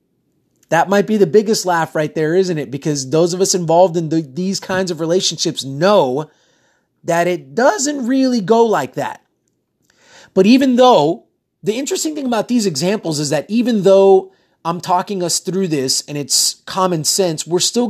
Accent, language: American, English